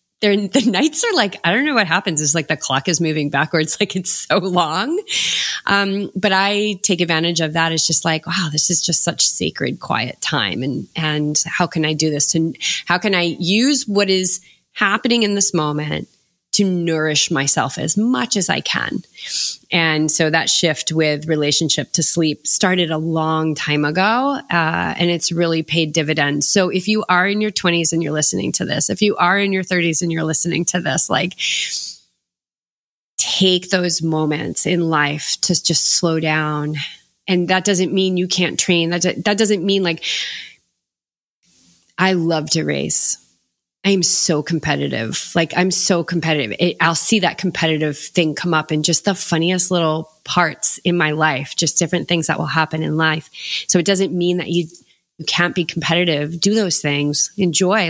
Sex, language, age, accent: female, English, 30-49, American